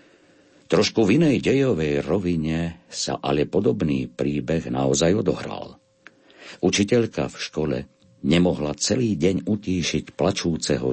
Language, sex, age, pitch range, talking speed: Slovak, male, 60-79, 70-85 Hz, 105 wpm